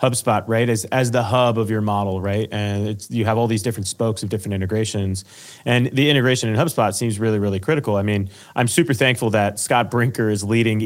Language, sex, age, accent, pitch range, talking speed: English, male, 30-49, American, 105-130 Hz, 220 wpm